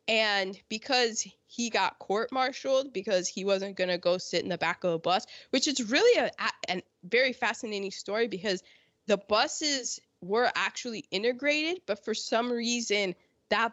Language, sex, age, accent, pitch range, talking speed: English, female, 20-39, American, 190-255 Hz, 165 wpm